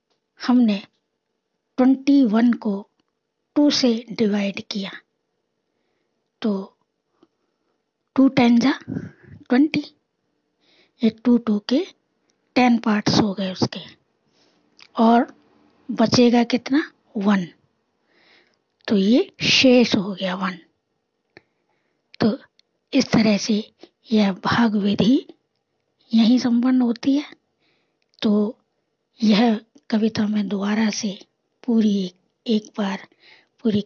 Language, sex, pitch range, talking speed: Hindi, female, 210-255 Hz, 95 wpm